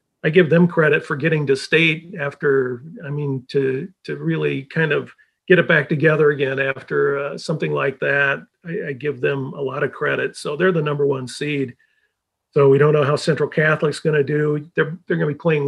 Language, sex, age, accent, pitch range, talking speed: English, male, 50-69, American, 140-160 Hz, 215 wpm